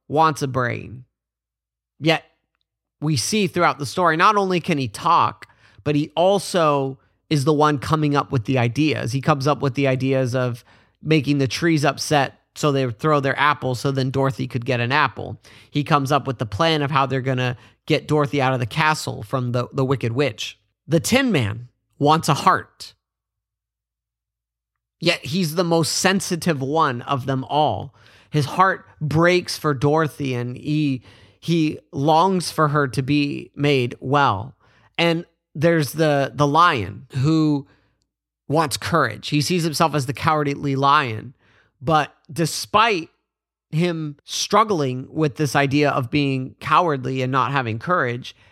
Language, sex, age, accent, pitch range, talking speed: English, male, 30-49, American, 125-155 Hz, 160 wpm